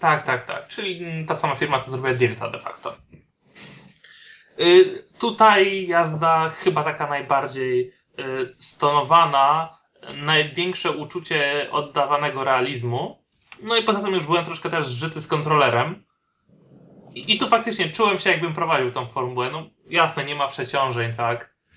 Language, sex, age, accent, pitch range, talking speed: Polish, male, 20-39, native, 130-175 Hz, 130 wpm